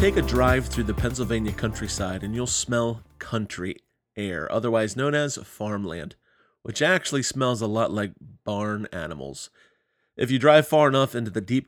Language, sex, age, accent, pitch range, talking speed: English, male, 30-49, American, 105-135 Hz, 165 wpm